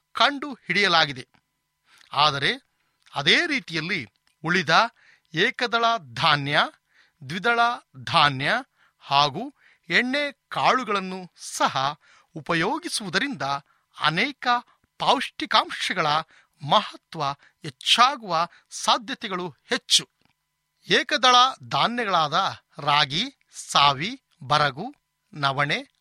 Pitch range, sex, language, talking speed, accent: 165-265 Hz, male, Kannada, 60 wpm, native